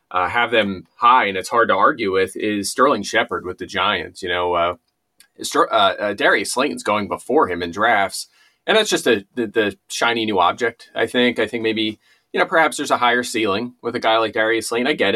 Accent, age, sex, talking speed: American, 30-49, male, 220 wpm